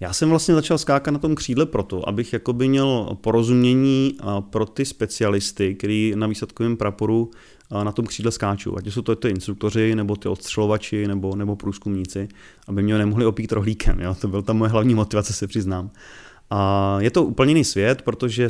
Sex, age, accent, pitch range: male, 30-49, native, 100-115 Hz